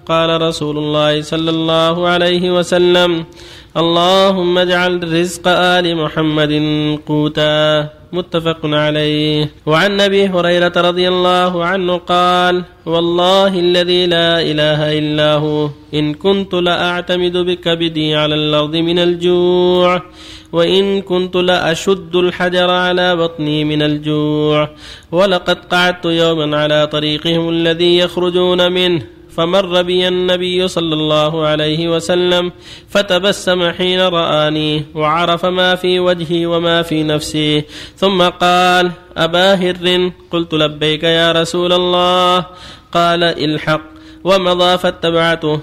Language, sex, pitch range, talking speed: Arabic, male, 155-180 Hz, 105 wpm